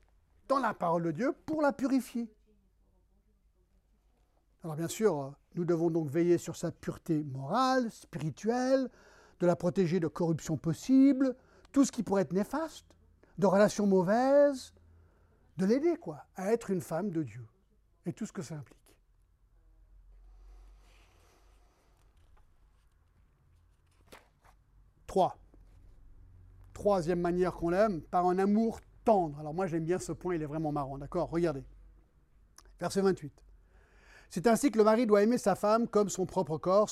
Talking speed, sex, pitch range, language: 140 wpm, male, 135-205 Hz, French